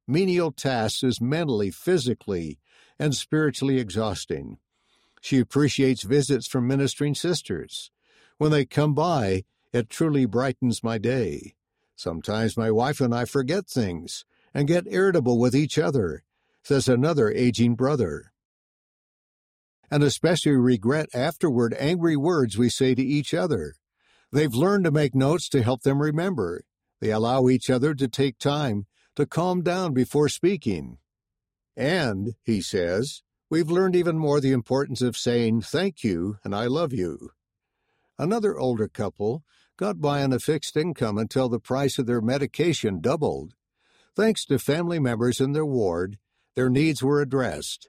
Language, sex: English, male